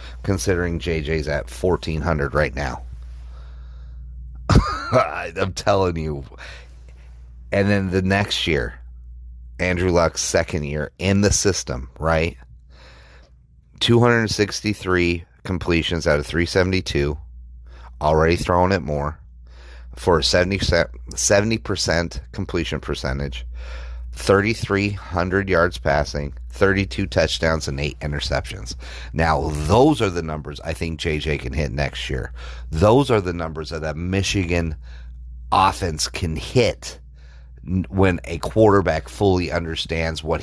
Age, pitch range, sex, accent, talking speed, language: 30-49, 65-90 Hz, male, American, 110 wpm, English